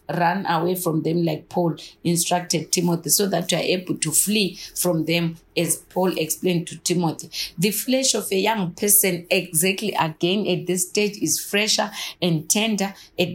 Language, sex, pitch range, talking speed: English, female, 175-220 Hz, 170 wpm